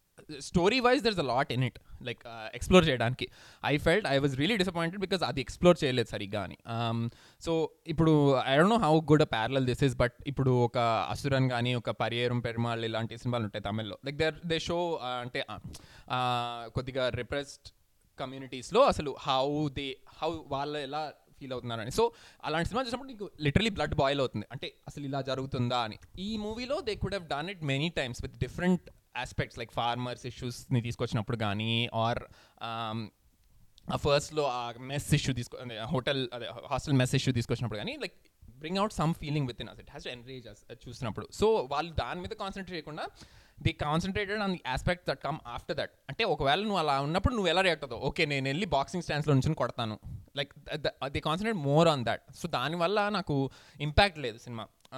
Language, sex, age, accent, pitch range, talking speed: Telugu, male, 20-39, native, 120-155 Hz, 180 wpm